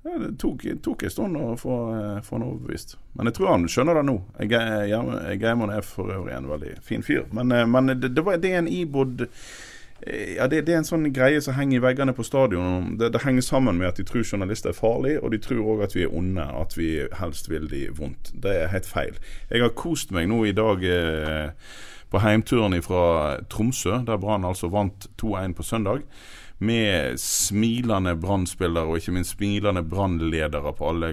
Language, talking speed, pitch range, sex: English, 210 wpm, 85-115 Hz, male